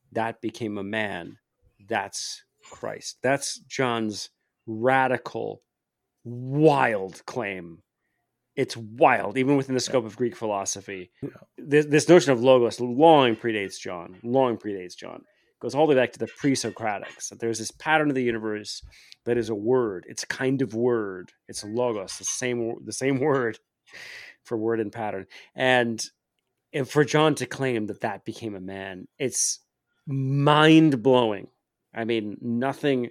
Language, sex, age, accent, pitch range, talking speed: English, male, 30-49, American, 110-135 Hz, 150 wpm